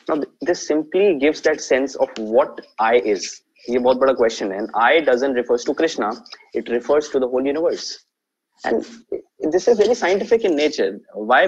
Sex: male